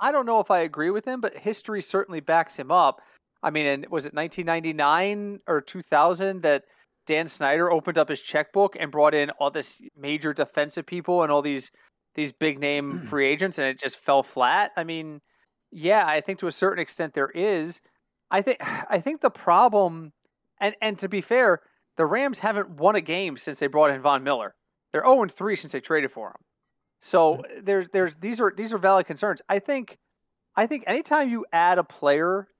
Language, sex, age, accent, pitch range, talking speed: English, male, 30-49, American, 145-195 Hz, 200 wpm